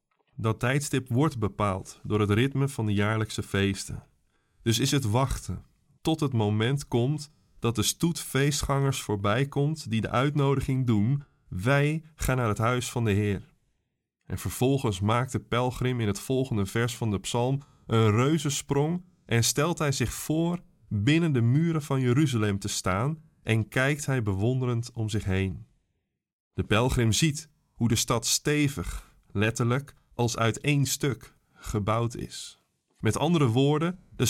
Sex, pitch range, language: male, 110-140 Hz, Dutch